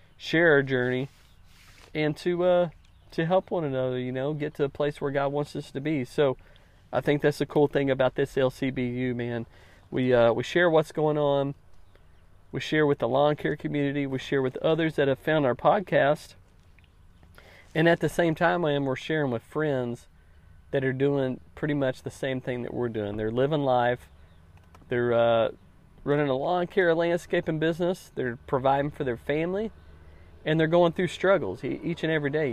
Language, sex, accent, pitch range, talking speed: English, male, American, 115-155 Hz, 190 wpm